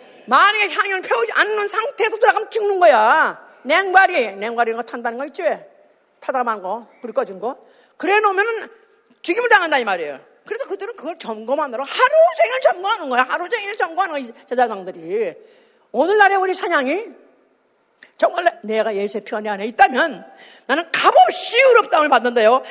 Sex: female